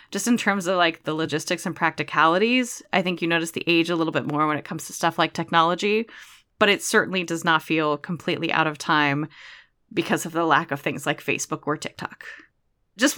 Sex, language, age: female, English, 20-39